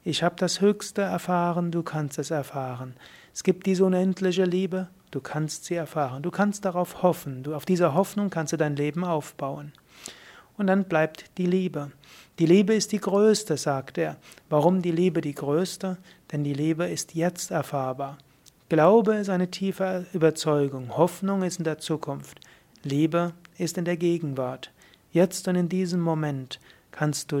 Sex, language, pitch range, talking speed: male, German, 145-180 Hz, 165 wpm